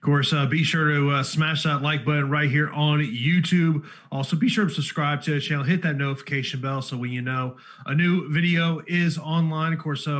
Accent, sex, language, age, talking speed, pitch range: American, male, English, 30-49, 225 wpm, 130-155 Hz